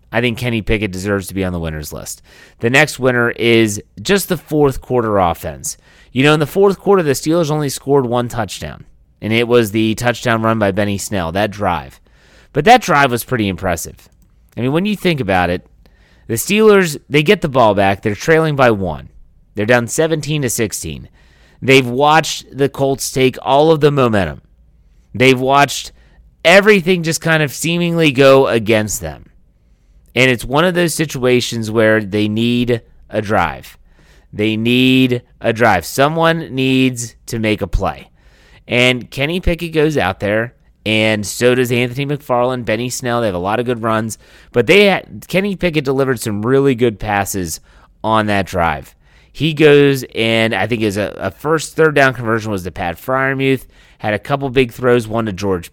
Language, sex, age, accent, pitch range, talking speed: English, male, 30-49, American, 105-140 Hz, 180 wpm